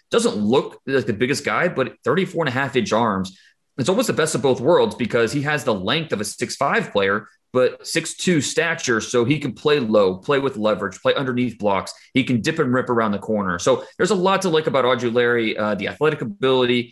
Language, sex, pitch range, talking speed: English, male, 105-135 Hz, 225 wpm